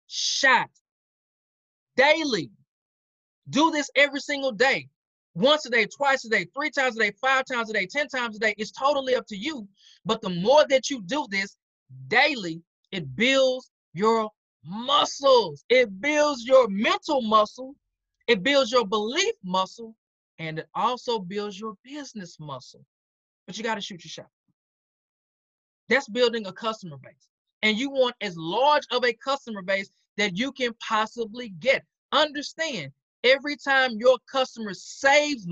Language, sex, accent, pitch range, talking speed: English, male, American, 200-275 Hz, 155 wpm